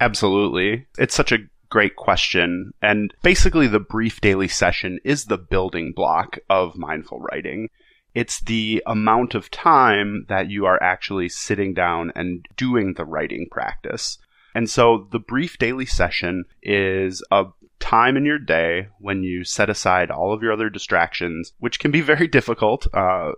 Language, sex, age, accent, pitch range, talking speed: English, male, 30-49, American, 90-115 Hz, 160 wpm